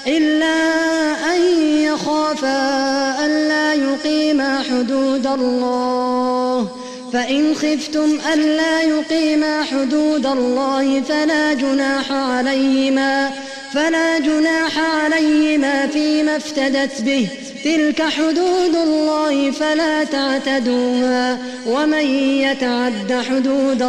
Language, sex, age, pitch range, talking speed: Arabic, female, 20-39, 265-305 Hz, 75 wpm